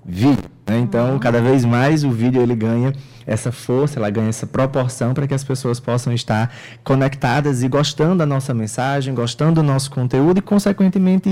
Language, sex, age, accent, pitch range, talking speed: Portuguese, male, 20-39, Brazilian, 115-150 Hz, 180 wpm